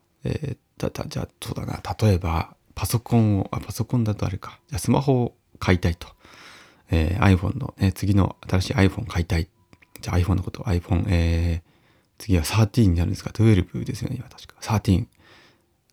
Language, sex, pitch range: Japanese, male, 90-125 Hz